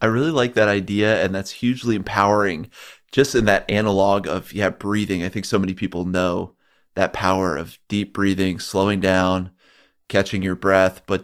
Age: 30-49